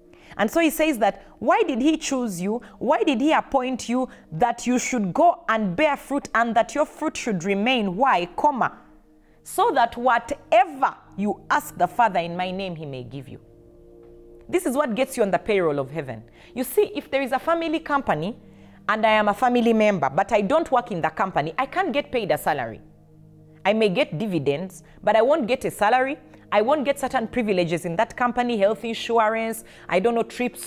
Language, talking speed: English, 205 wpm